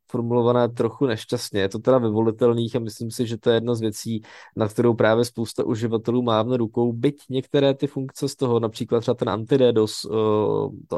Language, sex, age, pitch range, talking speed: Czech, male, 20-39, 105-120 Hz, 185 wpm